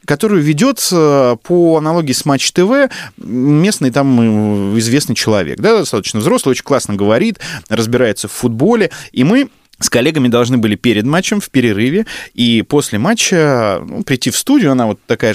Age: 20-39